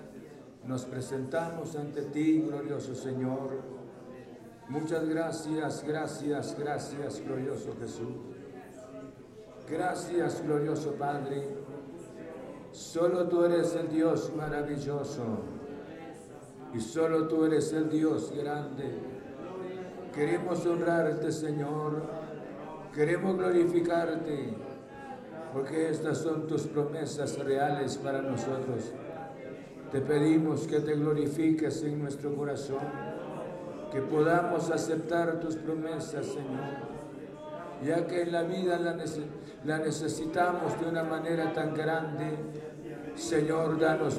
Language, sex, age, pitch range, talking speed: Spanish, male, 60-79, 145-165 Hz, 95 wpm